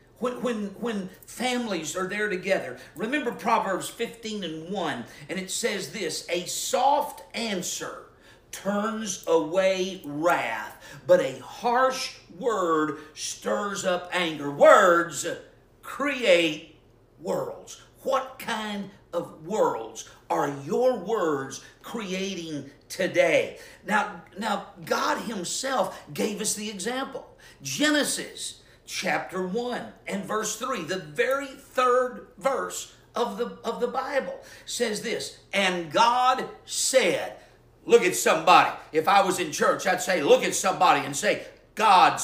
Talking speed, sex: 120 wpm, male